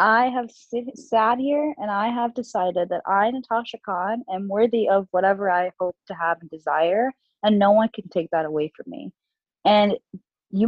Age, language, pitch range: 20-39, Indonesian, 175-225 Hz